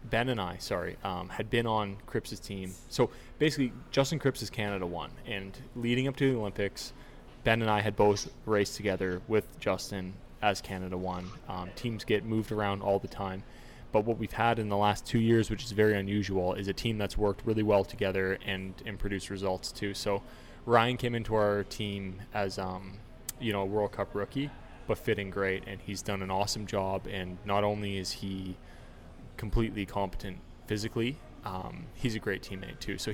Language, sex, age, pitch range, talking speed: English, male, 20-39, 95-110 Hz, 195 wpm